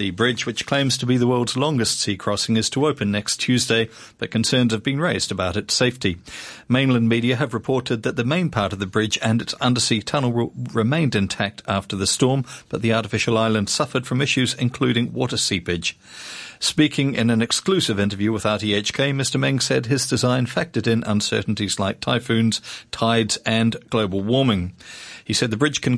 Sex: male